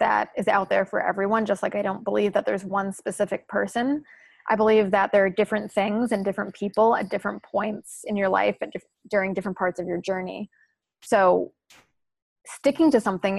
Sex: female